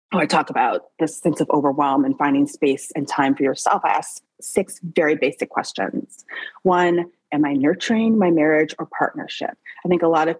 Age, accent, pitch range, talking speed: 30-49, American, 155-230 Hz, 195 wpm